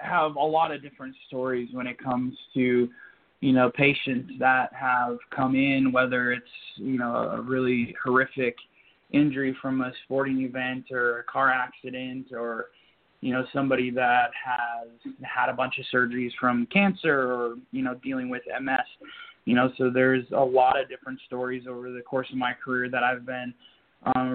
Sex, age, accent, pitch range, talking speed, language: male, 20-39, American, 125-145 Hz, 175 wpm, English